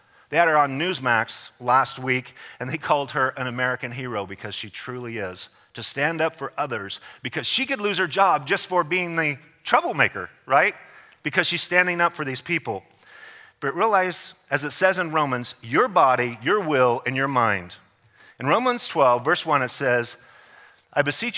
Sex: male